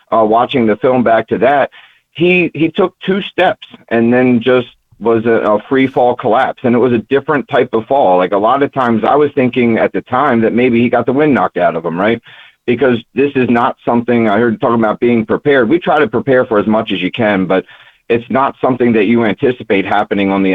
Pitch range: 105-120 Hz